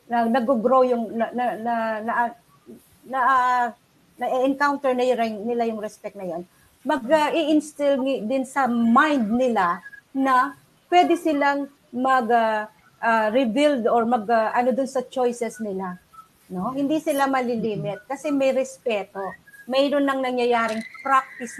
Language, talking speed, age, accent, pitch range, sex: Filipino, 145 wpm, 40-59, native, 215-265 Hz, female